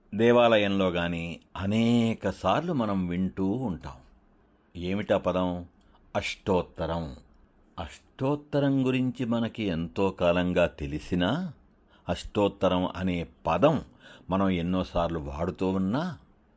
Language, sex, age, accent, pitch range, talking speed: Telugu, male, 60-79, native, 85-105 Hz, 85 wpm